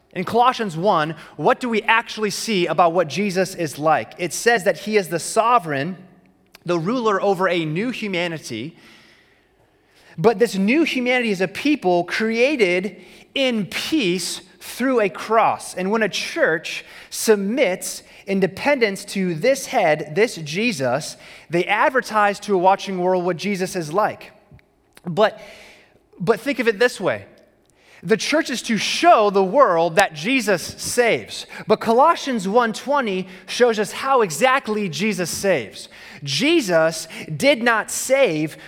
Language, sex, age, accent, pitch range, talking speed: English, male, 30-49, American, 185-240 Hz, 140 wpm